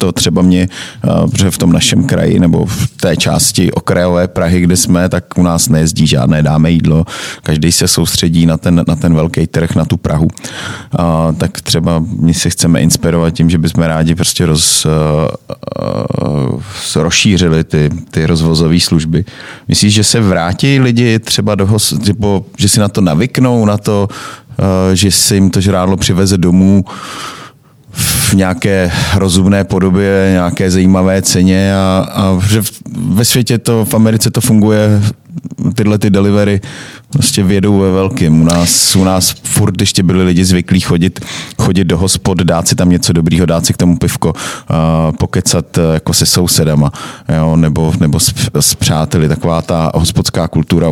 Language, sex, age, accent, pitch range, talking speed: Czech, male, 30-49, native, 85-105 Hz, 160 wpm